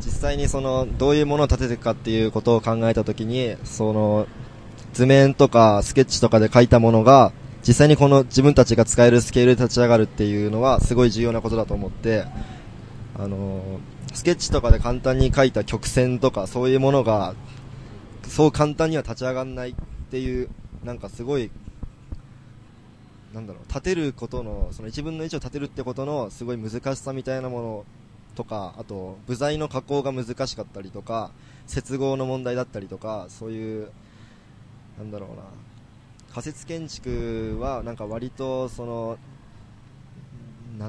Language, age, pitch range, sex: Japanese, 20-39, 110-130 Hz, male